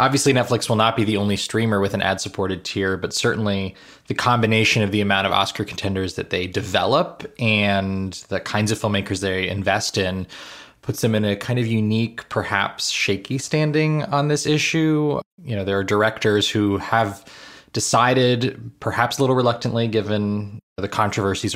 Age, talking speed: 20-39, 170 wpm